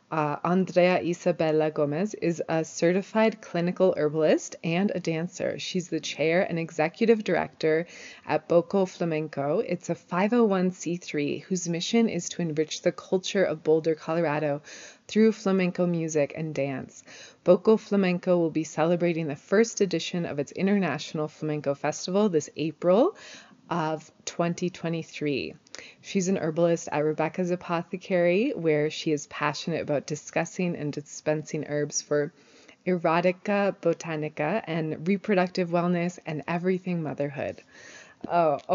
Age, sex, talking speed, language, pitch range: 20-39, female, 125 wpm, English, 160-195 Hz